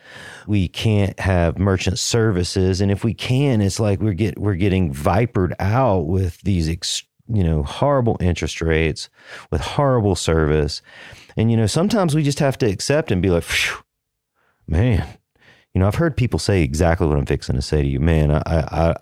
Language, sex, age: English, male, 40-59